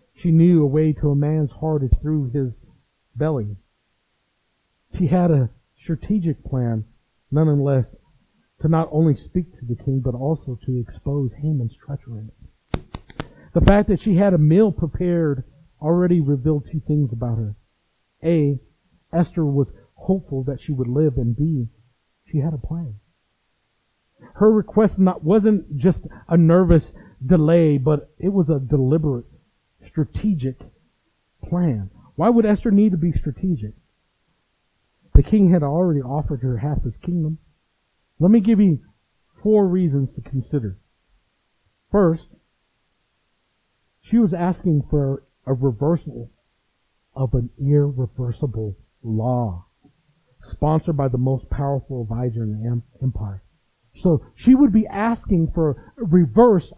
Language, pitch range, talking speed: English, 125-175 Hz, 135 wpm